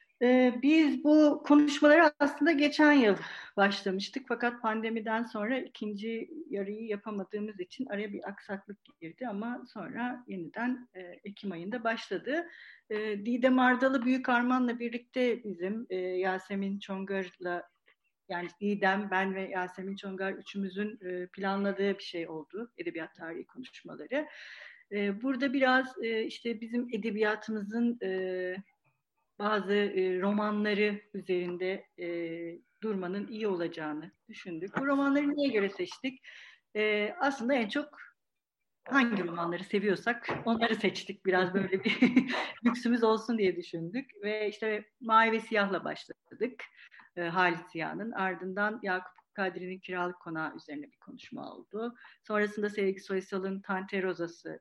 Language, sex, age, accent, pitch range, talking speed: Turkish, female, 50-69, native, 190-245 Hz, 115 wpm